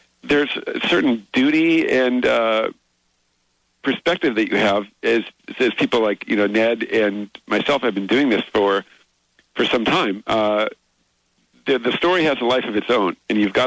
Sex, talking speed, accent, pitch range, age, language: male, 175 wpm, American, 95-115 Hz, 50-69, English